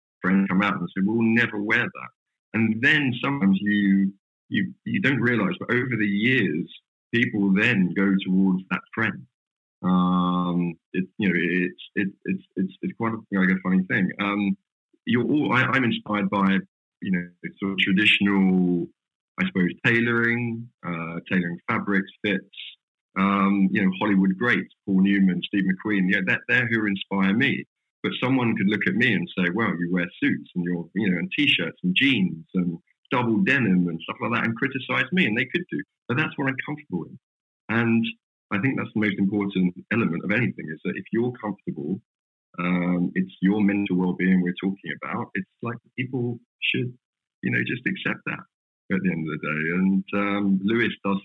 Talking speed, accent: 190 wpm, British